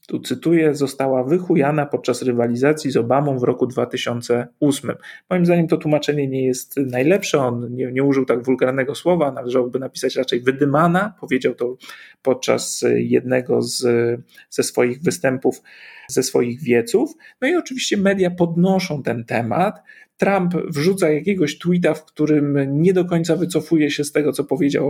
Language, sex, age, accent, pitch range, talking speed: Polish, male, 40-59, native, 135-175 Hz, 150 wpm